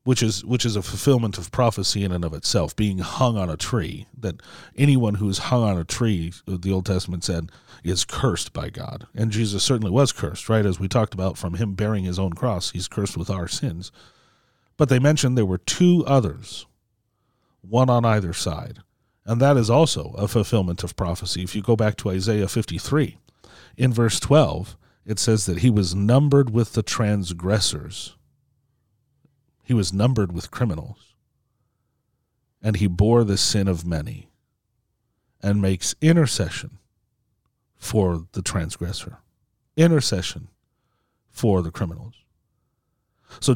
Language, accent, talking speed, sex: English, American, 155 wpm, male